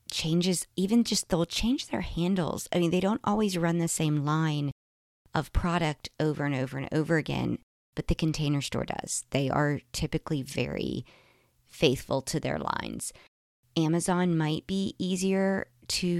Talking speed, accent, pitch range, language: 155 wpm, American, 135-180 Hz, English